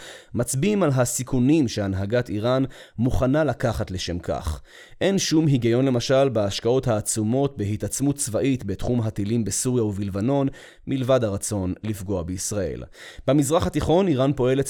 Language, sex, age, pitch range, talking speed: Hebrew, male, 20-39, 110-140 Hz, 120 wpm